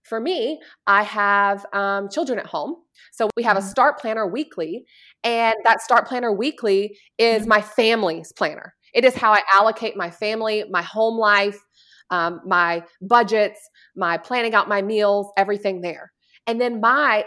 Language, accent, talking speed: English, American, 165 wpm